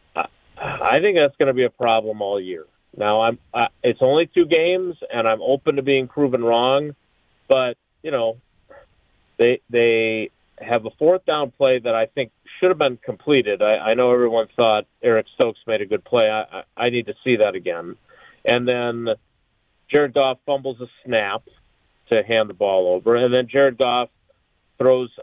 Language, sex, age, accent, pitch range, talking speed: English, male, 40-59, American, 110-130 Hz, 180 wpm